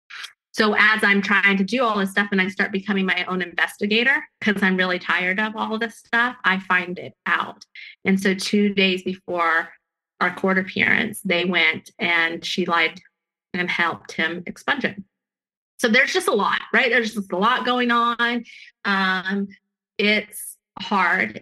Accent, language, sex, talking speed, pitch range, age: American, English, female, 170 wpm, 190-215 Hz, 30-49